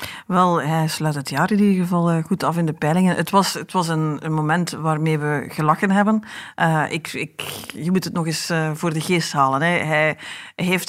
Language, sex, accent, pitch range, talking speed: Dutch, female, Dutch, 165-200 Hz, 220 wpm